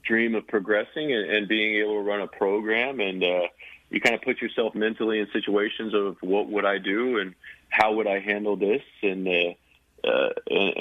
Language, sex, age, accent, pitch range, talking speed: English, male, 40-59, American, 90-105 Hz, 190 wpm